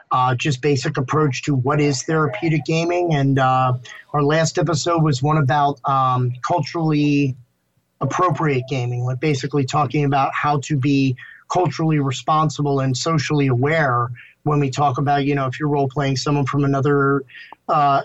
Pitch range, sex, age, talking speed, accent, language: 135-155 Hz, male, 30-49, 155 wpm, American, English